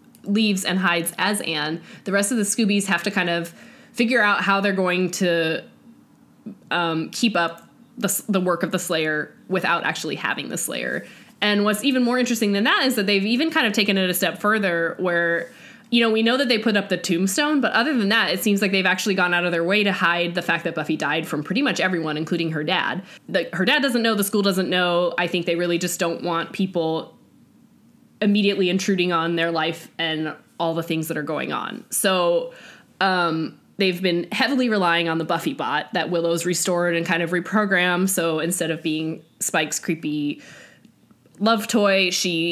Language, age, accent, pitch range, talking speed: English, 20-39, American, 170-215 Hz, 205 wpm